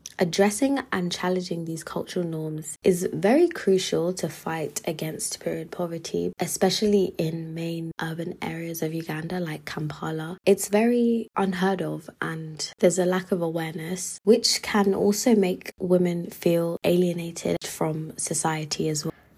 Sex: female